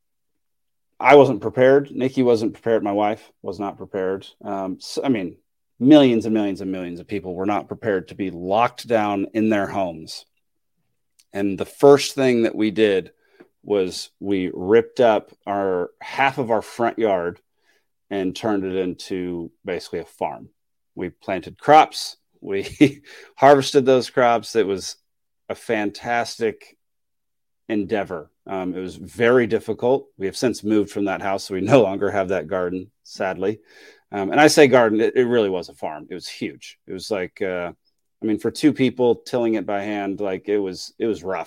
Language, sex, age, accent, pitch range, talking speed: English, male, 30-49, American, 95-125 Hz, 175 wpm